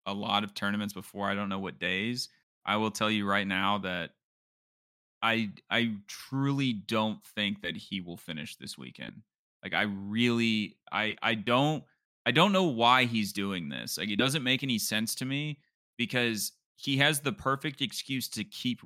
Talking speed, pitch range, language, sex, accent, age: 180 wpm, 100-130 Hz, English, male, American, 20-39